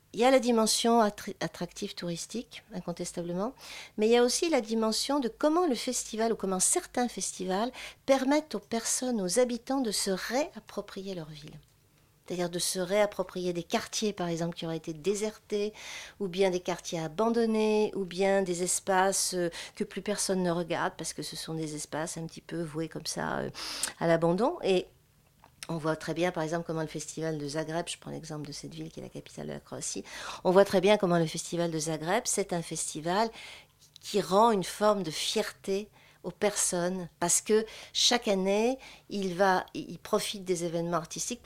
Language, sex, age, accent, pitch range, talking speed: French, female, 50-69, French, 170-215 Hz, 185 wpm